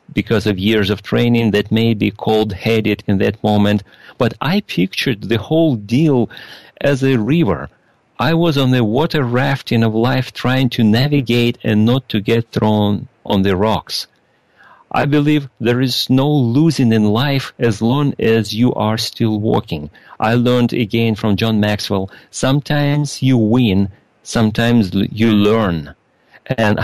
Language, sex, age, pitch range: English, male, 40-59, 105-130 Hz